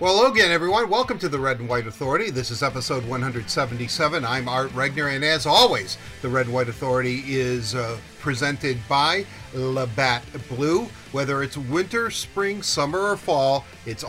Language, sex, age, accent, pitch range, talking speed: English, male, 50-69, American, 120-150 Hz, 170 wpm